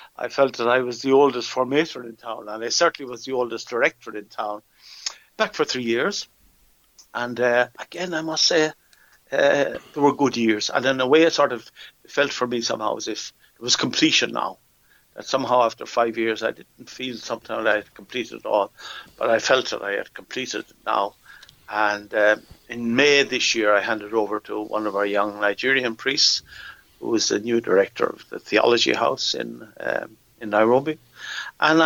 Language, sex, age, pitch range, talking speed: English, male, 60-79, 115-155 Hz, 195 wpm